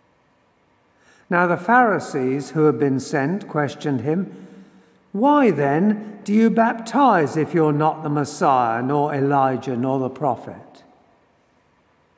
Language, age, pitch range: English, 60-79, 145-190 Hz